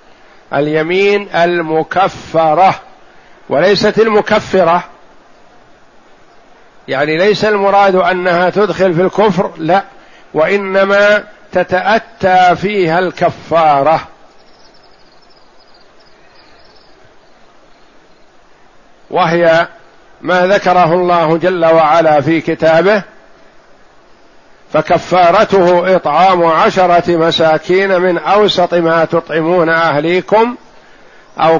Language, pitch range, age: Arabic, 165-195 Hz, 50-69